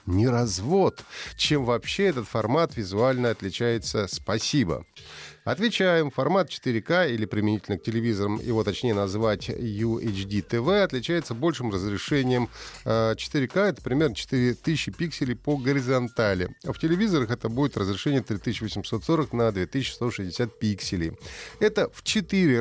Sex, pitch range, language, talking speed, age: male, 100-140 Hz, Russian, 120 wpm, 30-49